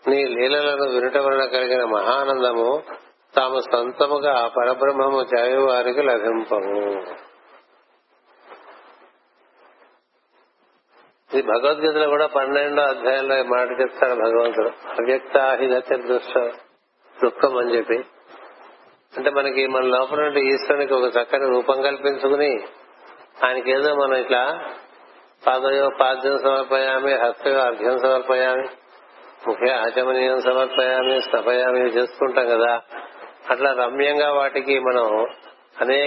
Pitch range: 125-140 Hz